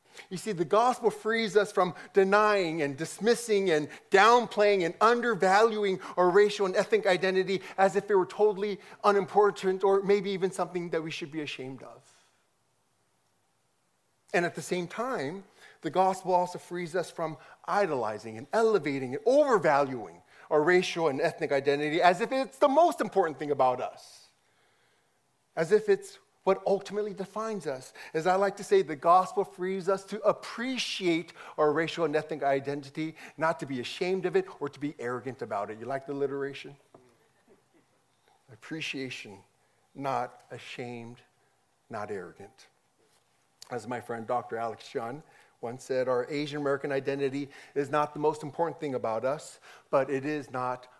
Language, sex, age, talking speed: English, male, 40-59, 155 wpm